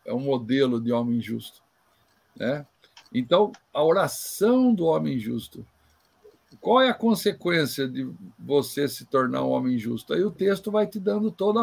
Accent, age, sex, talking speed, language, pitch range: Brazilian, 60-79, male, 160 wpm, Portuguese, 135-215 Hz